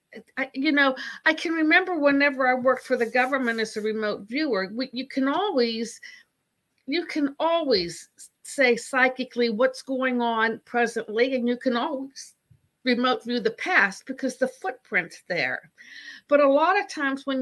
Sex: female